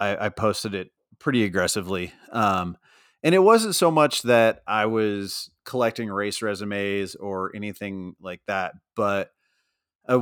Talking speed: 135 wpm